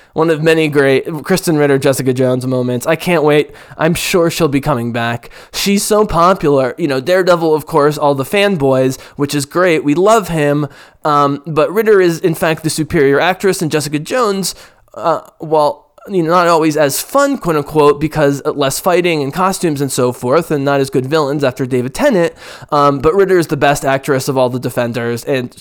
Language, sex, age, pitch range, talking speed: English, male, 20-39, 130-160 Hz, 195 wpm